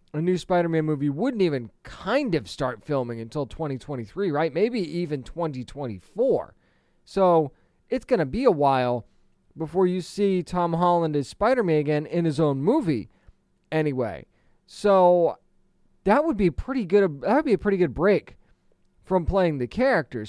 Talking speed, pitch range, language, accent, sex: 155 wpm, 140-180 Hz, English, American, male